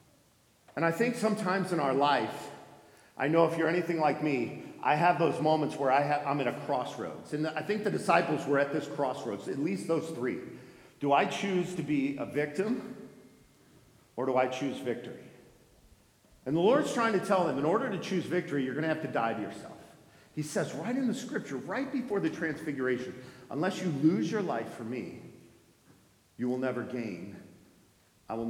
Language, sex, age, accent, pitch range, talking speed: English, male, 50-69, American, 140-220 Hz, 190 wpm